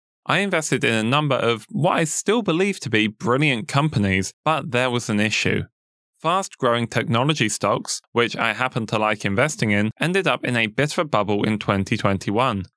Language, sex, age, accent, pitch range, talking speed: English, male, 10-29, British, 105-145 Hz, 190 wpm